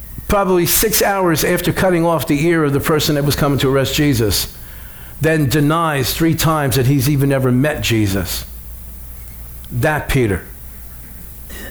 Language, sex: English, male